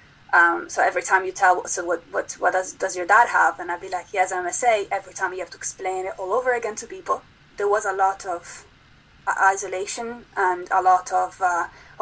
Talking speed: 225 wpm